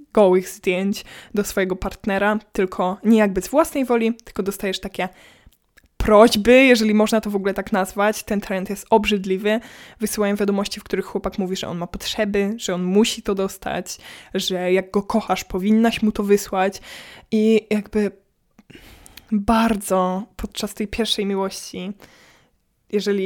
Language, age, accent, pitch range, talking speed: Polish, 20-39, native, 195-220 Hz, 145 wpm